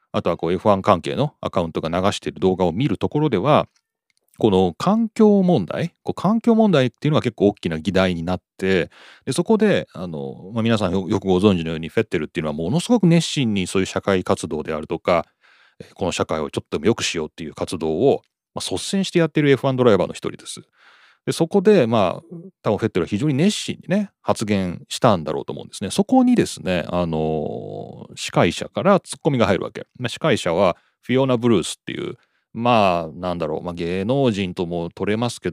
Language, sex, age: Japanese, male, 40-59